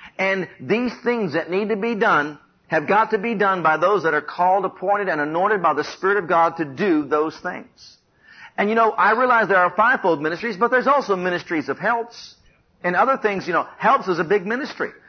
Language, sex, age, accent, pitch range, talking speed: English, male, 50-69, American, 180-235 Hz, 220 wpm